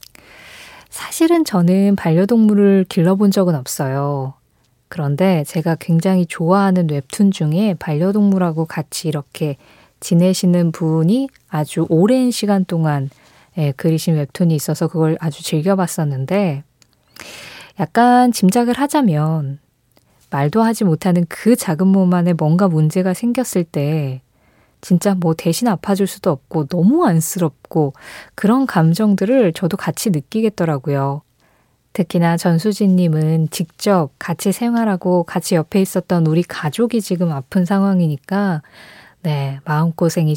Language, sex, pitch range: Korean, female, 155-200 Hz